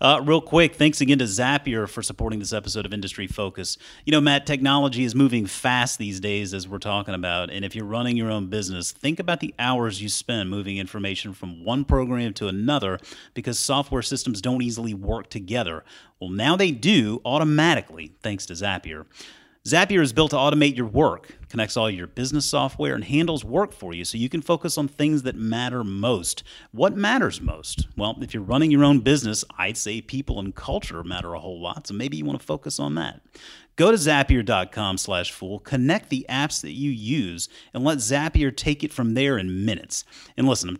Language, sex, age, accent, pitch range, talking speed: English, male, 30-49, American, 100-145 Hz, 205 wpm